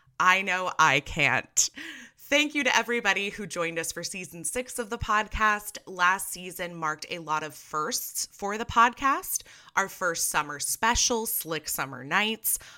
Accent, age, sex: American, 20-39, female